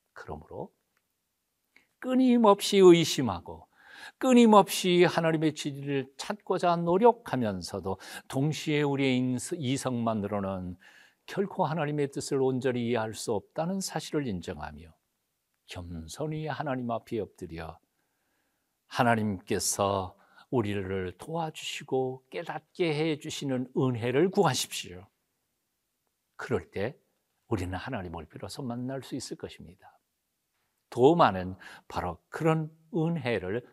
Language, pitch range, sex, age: Korean, 100-165 Hz, male, 60-79